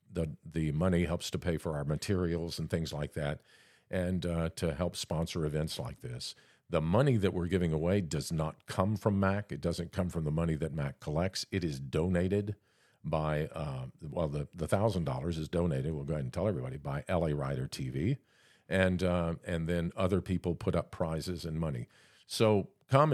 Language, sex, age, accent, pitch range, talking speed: English, male, 50-69, American, 80-110 Hz, 195 wpm